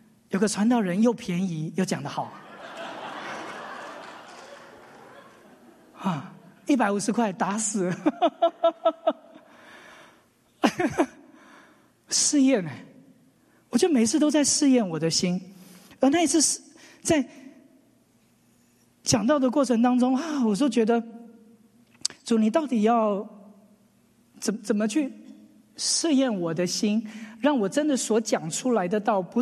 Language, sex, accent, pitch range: English, male, Chinese, 205-275 Hz